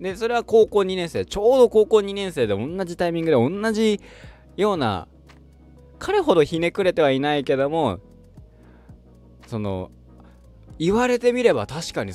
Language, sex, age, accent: Japanese, male, 20-39, native